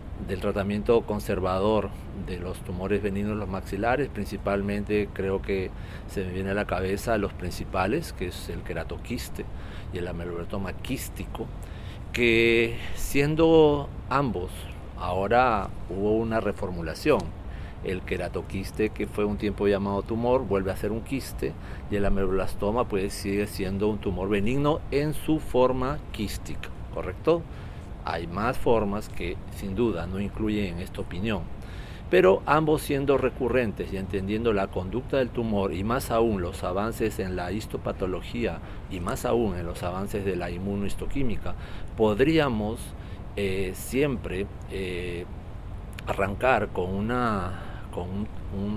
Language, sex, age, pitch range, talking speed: English, male, 50-69, 95-110 Hz, 135 wpm